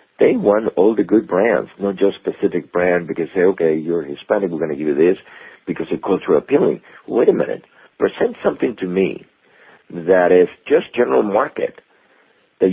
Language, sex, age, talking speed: English, male, 50-69, 180 wpm